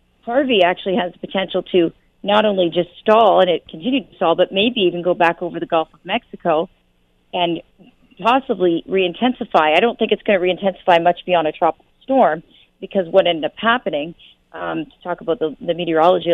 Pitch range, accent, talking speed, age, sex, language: 170-205 Hz, American, 190 wpm, 30-49, female, English